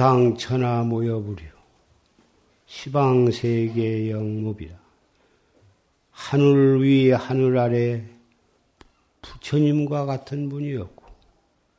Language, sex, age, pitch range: Korean, male, 50-69, 115-140 Hz